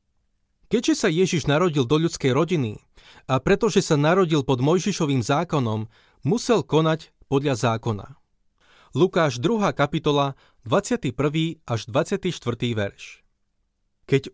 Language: Slovak